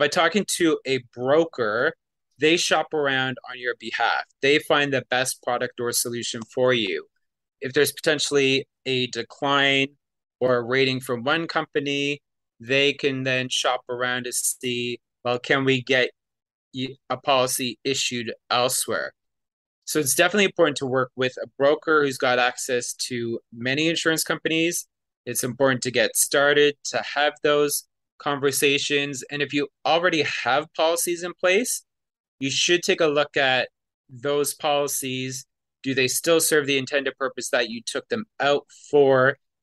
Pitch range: 125-150 Hz